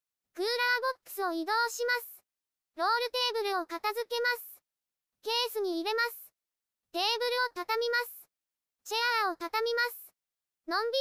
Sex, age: male, 20-39